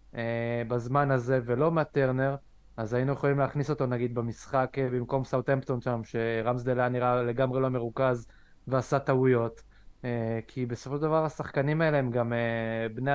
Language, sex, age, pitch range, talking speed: Hebrew, male, 20-39, 120-145 Hz, 135 wpm